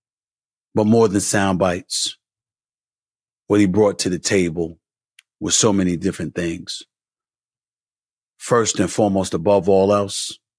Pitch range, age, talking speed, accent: 90-110 Hz, 40-59, 125 wpm, American